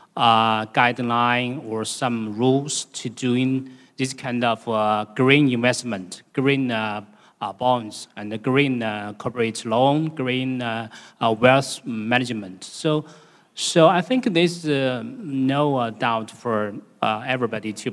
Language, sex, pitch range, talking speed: English, male, 115-140 Hz, 135 wpm